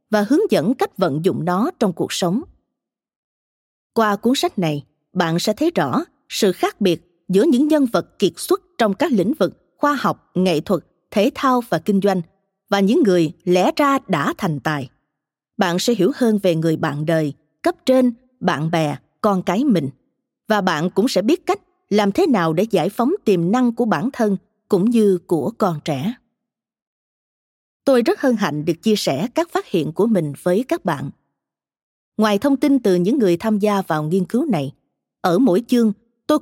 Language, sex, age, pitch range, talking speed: Vietnamese, female, 20-39, 175-255 Hz, 190 wpm